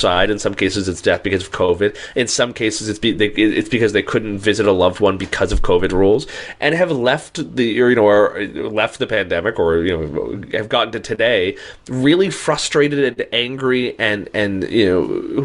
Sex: male